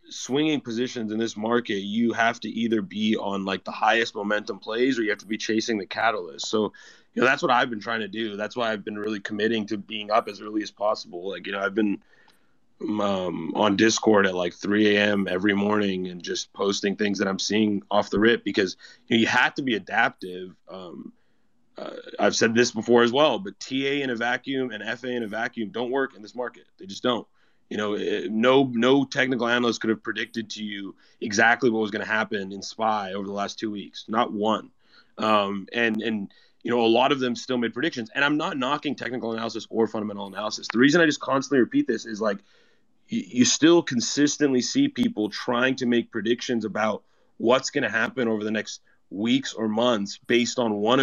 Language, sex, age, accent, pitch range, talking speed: English, male, 20-39, American, 105-125 Hz, 215 wpm